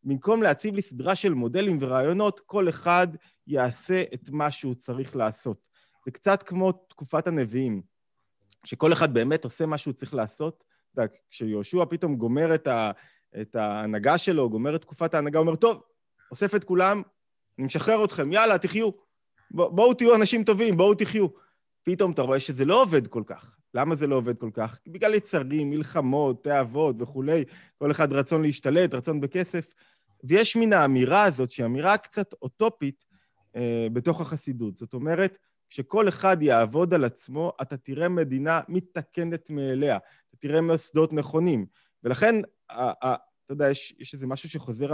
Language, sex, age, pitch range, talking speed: Hebrew, male, 20-39, 130-180 Hz, 155 wpm